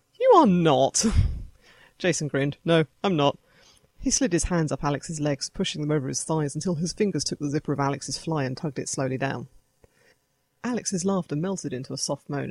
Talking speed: 195 wpm